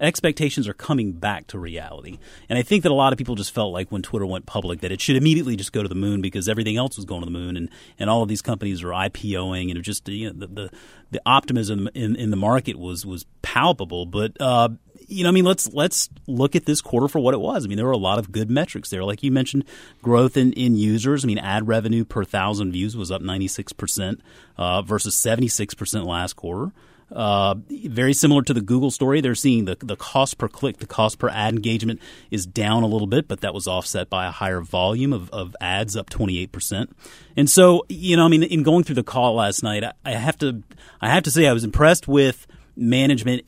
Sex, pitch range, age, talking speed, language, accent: male, 100-130 Hz, 30-49, 240 wpm, English, American